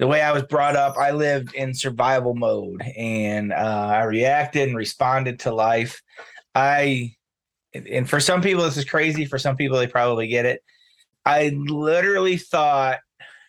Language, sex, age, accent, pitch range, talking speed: English, male, 20-39, American, 120-145 Hz, 165 wpm